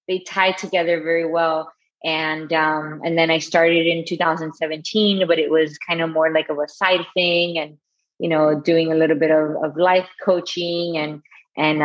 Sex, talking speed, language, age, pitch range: female, 190 wpm, English, 20-39, 155-180 Hz